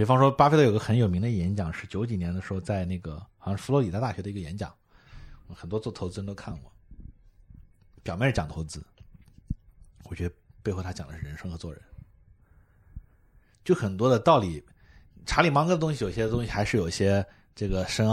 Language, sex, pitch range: Chinese, male, 90-115 Hz